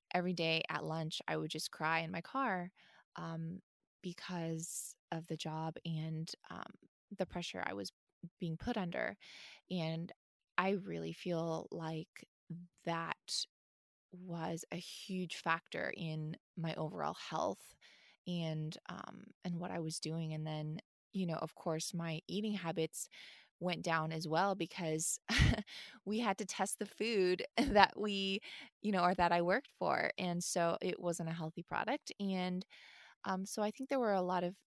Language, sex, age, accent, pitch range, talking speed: English, female, 20-39, American, 165-200 Hz, 155 wpm